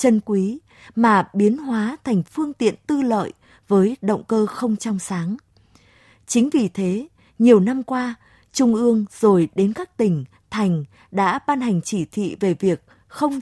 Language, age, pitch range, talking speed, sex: Vietnamese, 20-39, 185-245 Hz, 165 wpm, female